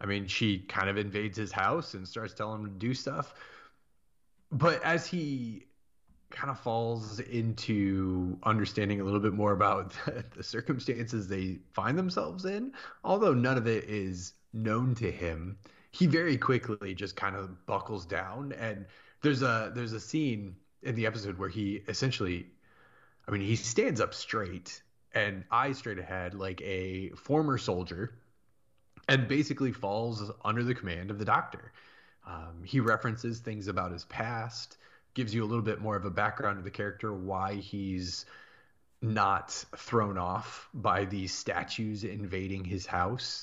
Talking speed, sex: 160 wpm, male